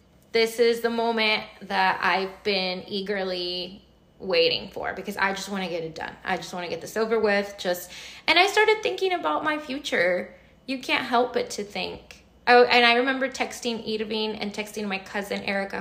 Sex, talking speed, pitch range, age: female, 195 wpm, 185-245 Hz, 20-39